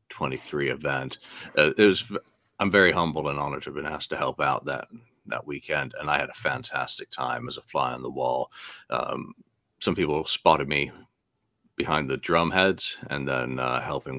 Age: 50-69